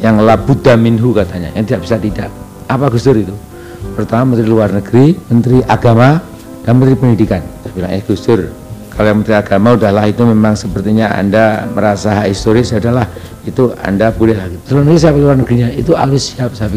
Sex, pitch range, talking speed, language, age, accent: male, 110-145 Hz, 170 wpm, Indonesian, 60-79, native